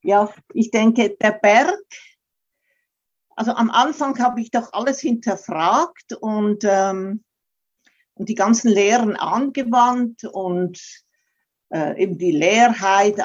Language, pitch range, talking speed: German, 195-255 Hz, 115 wpm